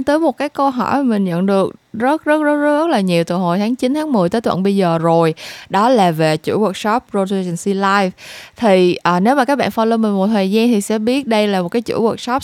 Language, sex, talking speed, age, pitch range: Vietnamese, female, 265 wpm, 20-39, 185-245 Hz